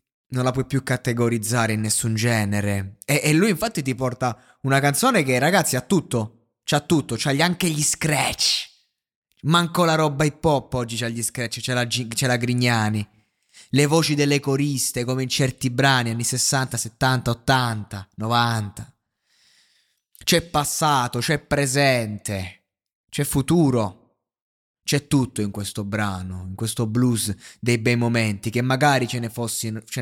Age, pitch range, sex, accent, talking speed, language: 20-39, 110-135 Hz, male, native, 145 wpm, Italian